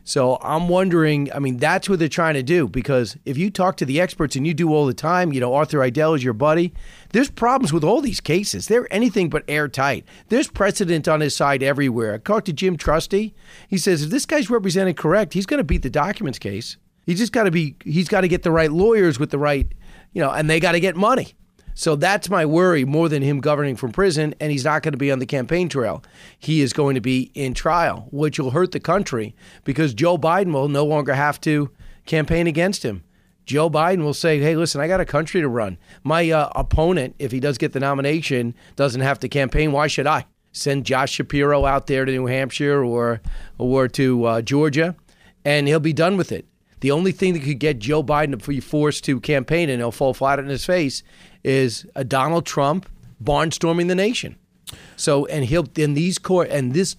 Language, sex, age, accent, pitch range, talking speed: English, male, 40-59, American, 140-175 Hz, 225 wpm